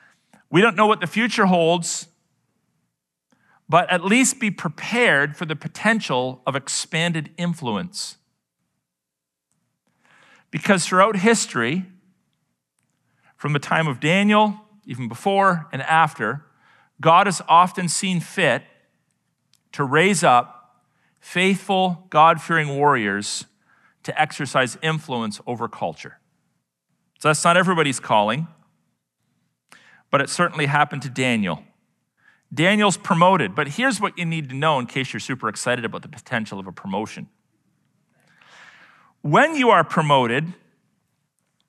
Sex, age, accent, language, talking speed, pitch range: male, 40-59, American, English, 115 wpm, 140-190 Hz